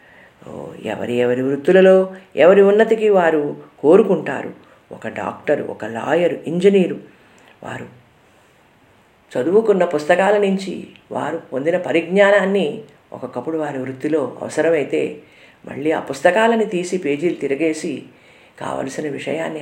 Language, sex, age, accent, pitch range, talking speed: Telugu, female, 50-69, native, 135-195 Hz, 95 wpm